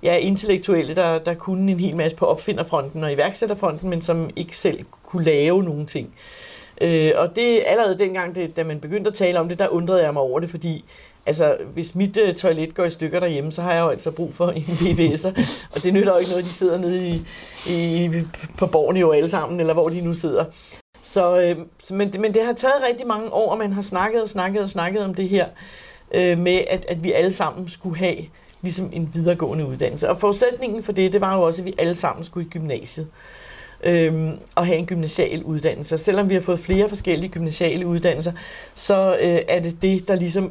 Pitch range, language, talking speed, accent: 170-195 Hz, Danish, 225 wpm, native